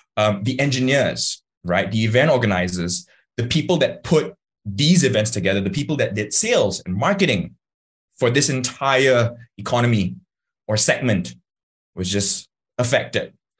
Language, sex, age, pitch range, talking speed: English, male, 20-39, 100-150 Hz, 130 wpm